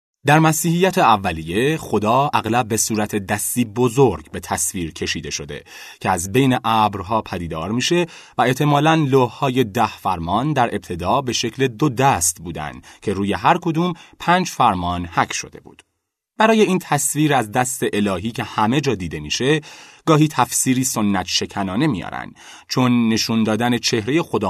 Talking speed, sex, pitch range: 150 wpm, male, 100-145 Hz